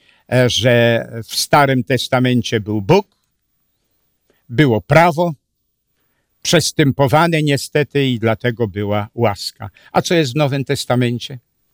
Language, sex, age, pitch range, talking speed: Polish, male, 60-79, 115-160 Hz, 100 wpm